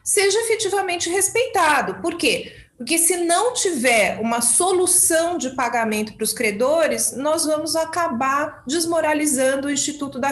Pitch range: 245-335 Hz